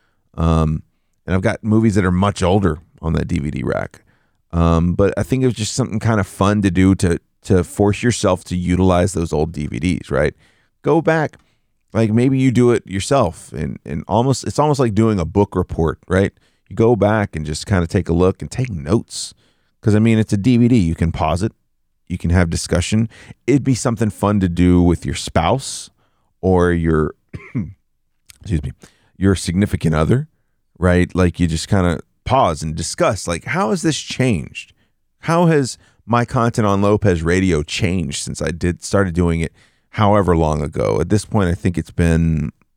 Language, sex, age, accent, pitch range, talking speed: English, male, 40-59, American, 85-110 Hz, 190 wpm